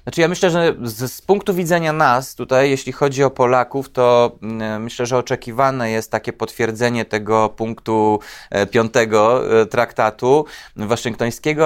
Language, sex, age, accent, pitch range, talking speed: Polish, male, 30-49, native, 120-145 Hz, 135 wpm